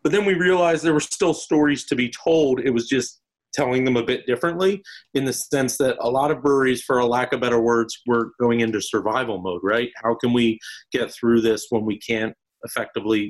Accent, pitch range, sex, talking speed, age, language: American, 110-130 Hz, male, 220 wpm, 30-49, English